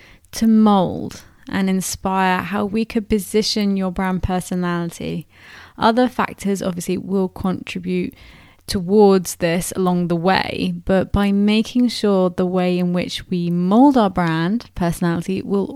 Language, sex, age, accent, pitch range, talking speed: English, female, 20-39, British, 175-215 Hz, 135 wpm